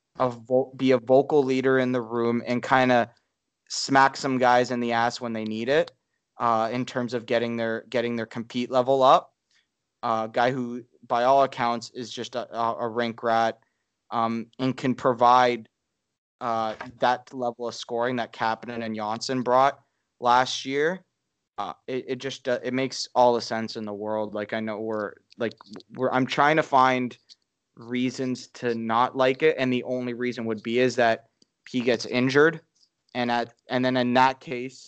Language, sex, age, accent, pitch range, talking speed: English, male, 20-39, American, 110-125 Hz, 185 wpm